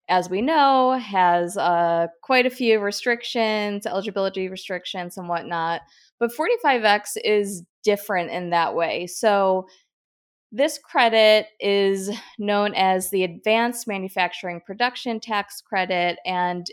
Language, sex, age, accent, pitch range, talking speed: English, female, 20-39, American, 180-220 Hz, 120 wpm